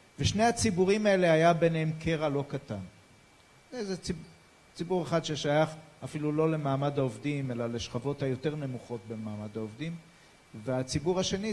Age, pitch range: 40-59, 135-175 Hz